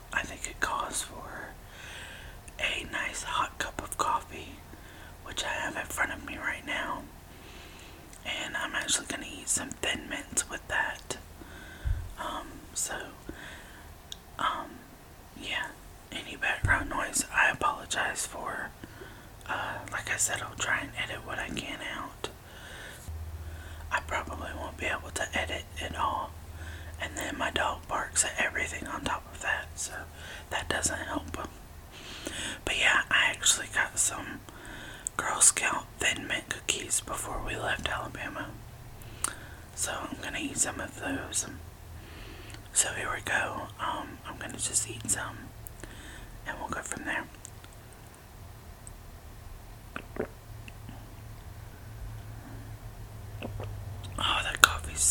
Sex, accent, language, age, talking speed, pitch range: male, American, English, 20-39, 130 wpm, 80-110 Hz